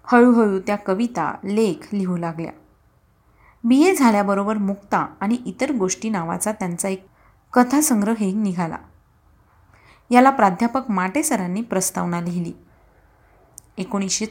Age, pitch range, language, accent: 30-49, 190-245 Hz, Marathi, native